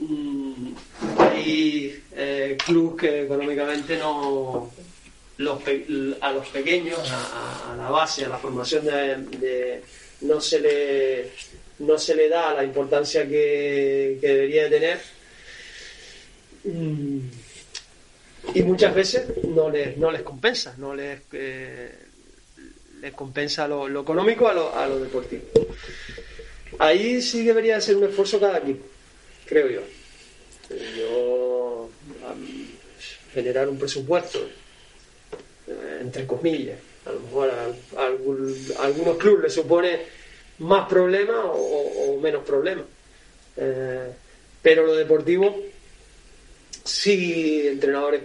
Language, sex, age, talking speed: Spanish, male, 30-49, 120 wpm